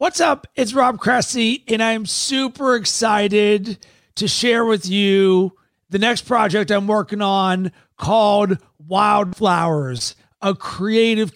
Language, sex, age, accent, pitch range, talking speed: English, male, 40-59, American, 185-225 Hz, 120 wpm